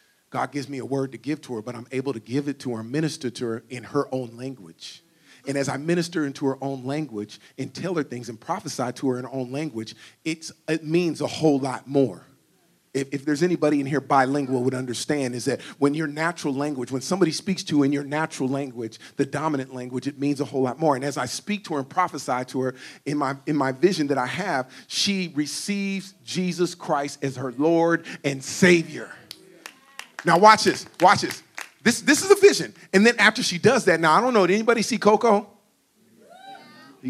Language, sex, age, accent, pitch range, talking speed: English, male, 40-59, American, 135-180 Hz, 220 wpm